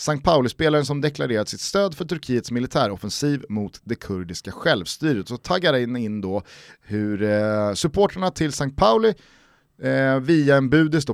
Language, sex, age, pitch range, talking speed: Swedish, male, 30-49, 105-155 Hz, 145 wpm